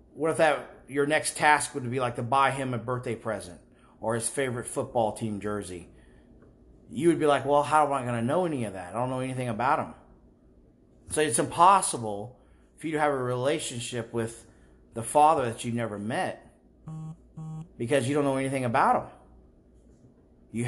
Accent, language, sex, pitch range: American, English, male, 100-140 Hz